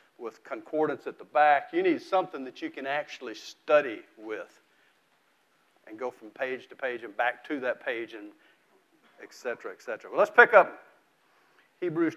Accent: American